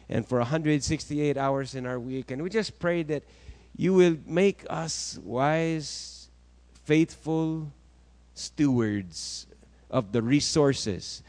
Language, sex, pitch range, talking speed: English, male, 110-160 Hz, 115 wpm